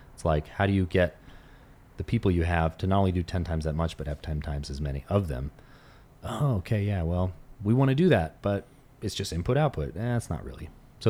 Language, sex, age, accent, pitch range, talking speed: English, male, 30-49, American, 90-120 Hz, 245 wpm